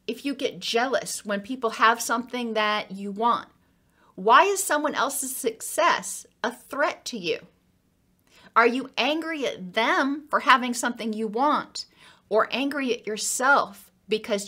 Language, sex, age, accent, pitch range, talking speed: English, female, 40-59, American, 200-265 Hz, 145 wpm